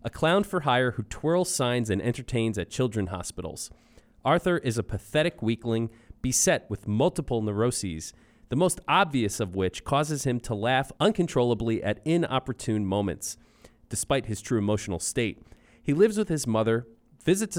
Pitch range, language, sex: 105-140 Hz, English, male